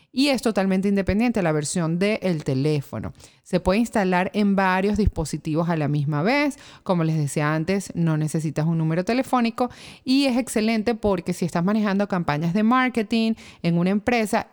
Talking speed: 165 wpm